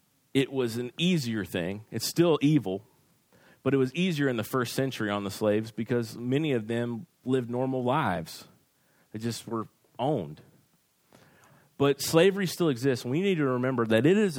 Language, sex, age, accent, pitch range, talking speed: English, male, 30-49, American, 110-140 Hz, 170 wpm